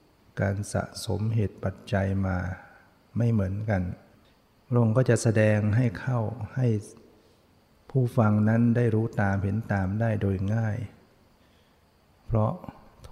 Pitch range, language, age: 100-110 Hz, Thai, 60-79